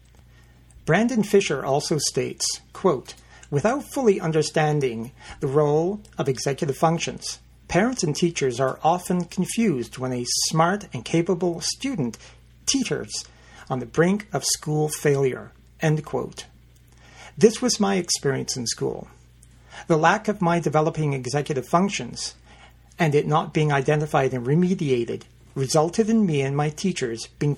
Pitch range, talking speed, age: 130-180 Hz, 125 wpm, 50-69